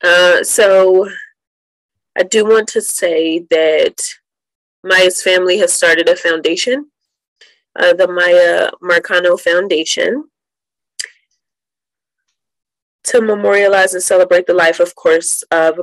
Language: English